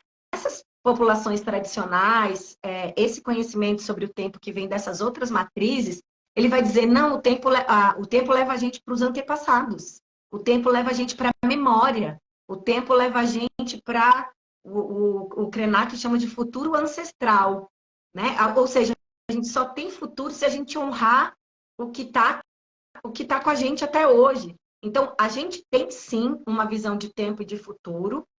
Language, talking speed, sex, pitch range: Portuguese, 170 wpm, female, 205-265 Hz